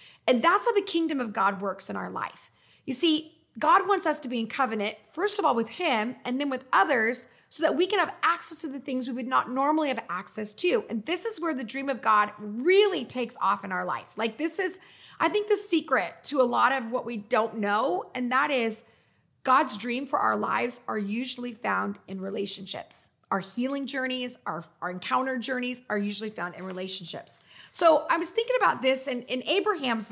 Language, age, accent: English, 30-49, American